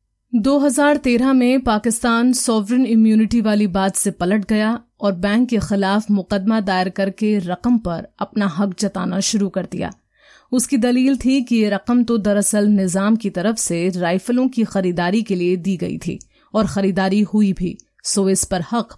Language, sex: Hindi, female